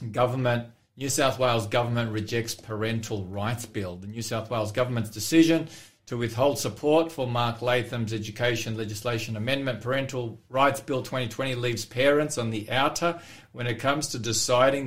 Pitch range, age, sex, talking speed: 110-130 Hz, 40-59, male, 155 wpm